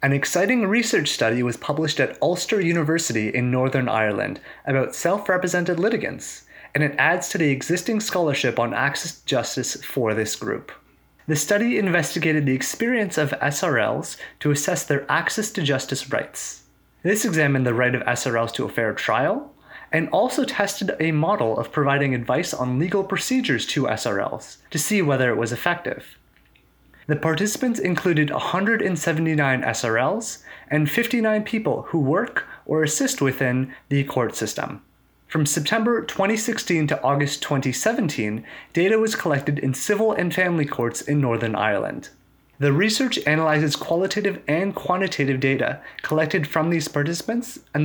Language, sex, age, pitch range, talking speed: English, male, 30-49, 135-195 Hz, 145 wpm